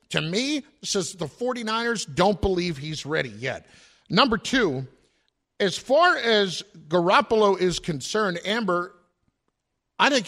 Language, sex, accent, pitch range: English, male, American, 165-220 Hz